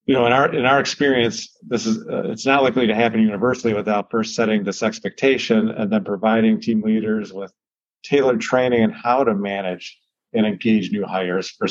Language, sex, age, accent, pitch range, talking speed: English, male, 40-59, American, 100-120 Hz, 195 wpm